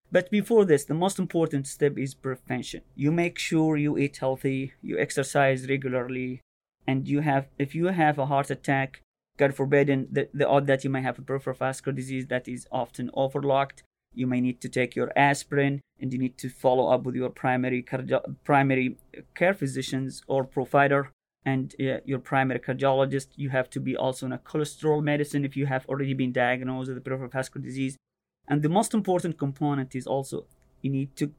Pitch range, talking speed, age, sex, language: 130-145 Hz, 195 wpm, 30-49, male, English